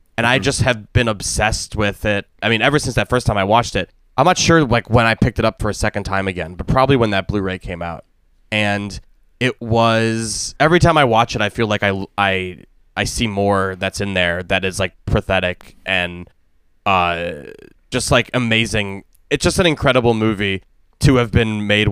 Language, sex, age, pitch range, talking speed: English, male, 20-39, 95-125 Hz, 210 wpm